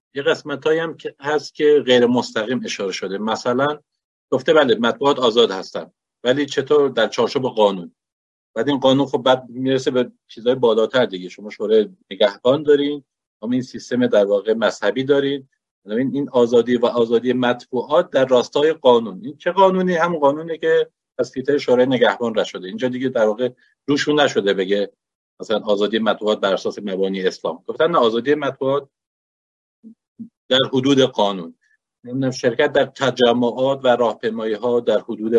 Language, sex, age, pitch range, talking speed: Persian, male, 50-69, 110-140 Hz, 150 wpm